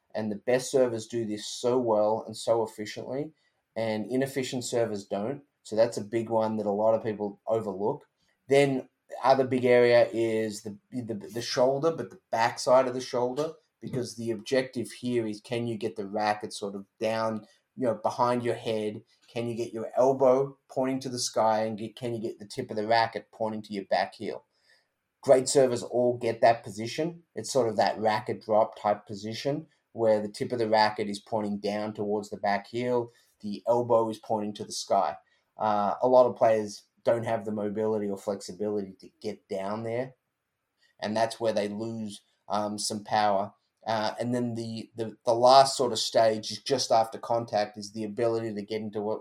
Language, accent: English, Australian